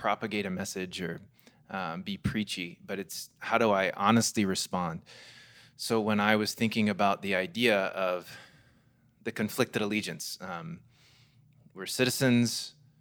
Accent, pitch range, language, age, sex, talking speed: American, 100-125 Hz, English, 20-39, male, 135 wpm